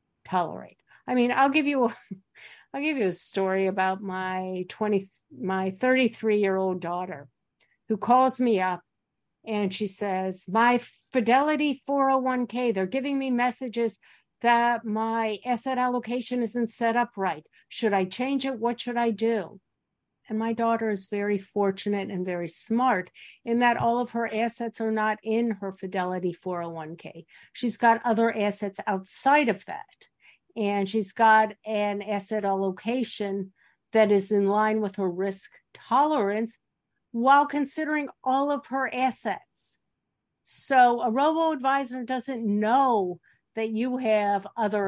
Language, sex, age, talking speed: English, female, 50-69, 140 wpm